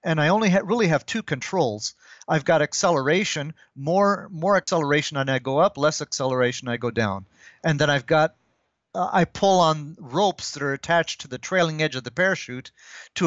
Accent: American